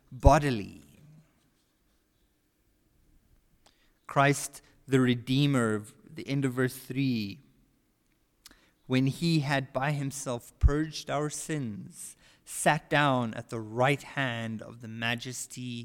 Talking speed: 100 wpm